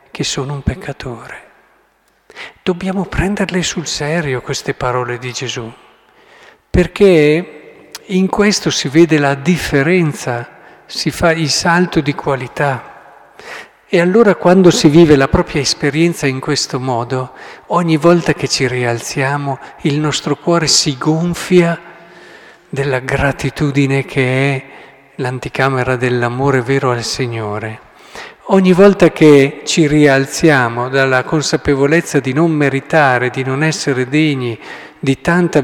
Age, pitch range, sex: 50-69, 135-175 Hz, male